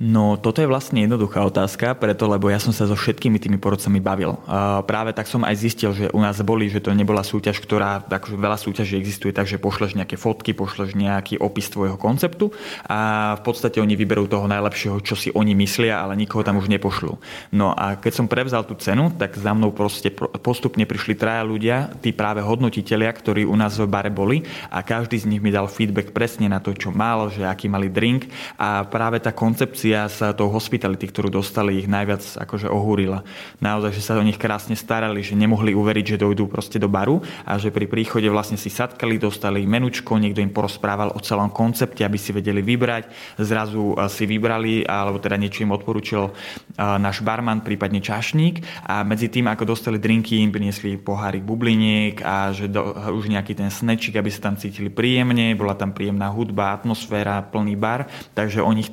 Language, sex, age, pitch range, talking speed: Slovak, male, 20-39, 100-110 Hz, 190 wpm